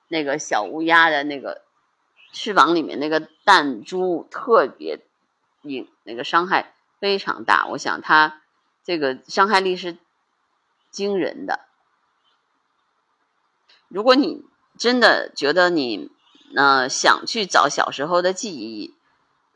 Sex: female